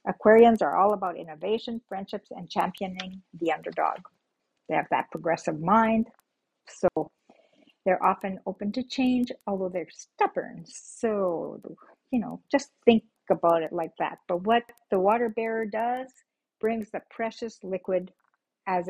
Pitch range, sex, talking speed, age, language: 180-235 Hz, female, 140 wpm, 50-69, English